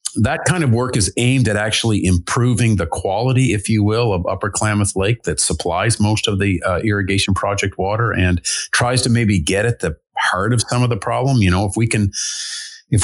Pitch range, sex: 85-110 Hz, male